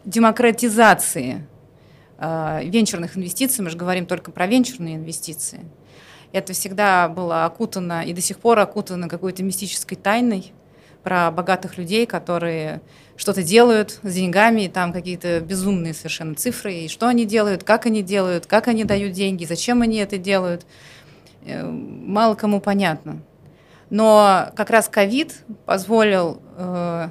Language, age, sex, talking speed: Russian, 30-49, female, 135 wpm